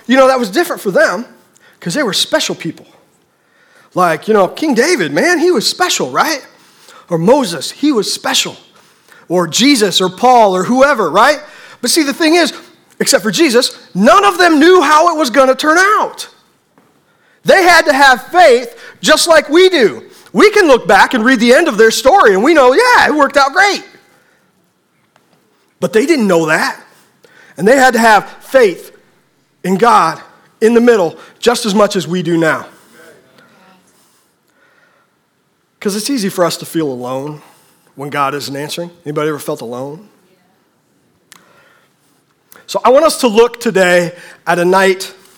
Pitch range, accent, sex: 180-295 Hz, American, male